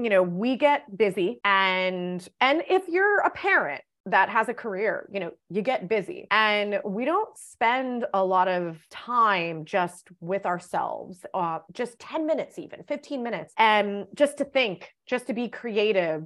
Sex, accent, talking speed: female, American, 170 wpm